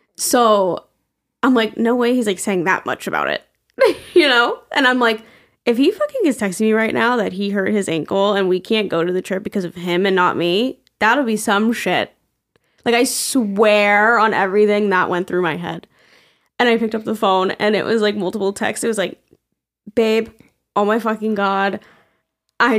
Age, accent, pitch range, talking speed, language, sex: 10-29, American, 190-235 Hz, 205 wpm, English, female